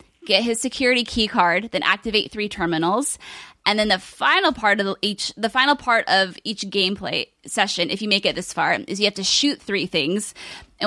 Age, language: 20-39, English